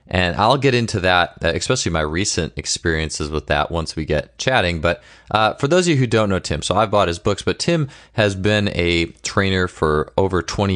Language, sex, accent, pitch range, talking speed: English, male, American, 80-105 Hz, 215 wpm